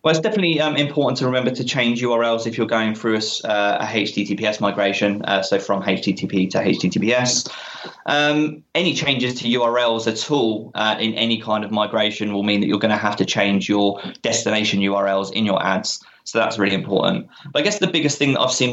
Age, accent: 20-39, British